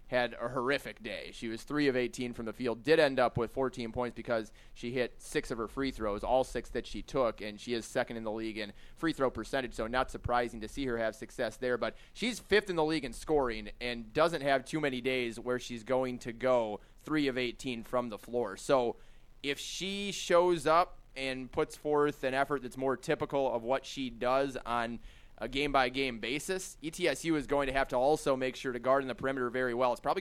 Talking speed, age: 230 wpm, 20-39